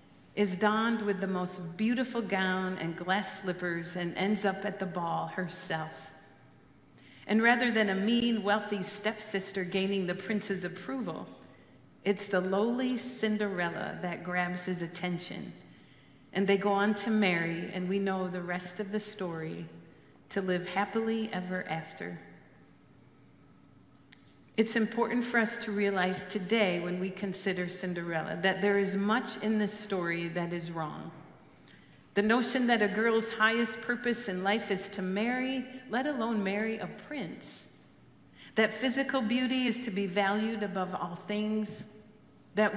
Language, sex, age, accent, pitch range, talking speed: English, female, 40-59, American, 180-220 Hz, 145 wpm